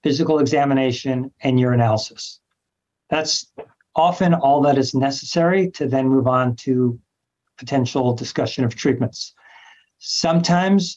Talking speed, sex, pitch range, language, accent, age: 110 wpm, male, 130-160 Hz, English, American, 50-69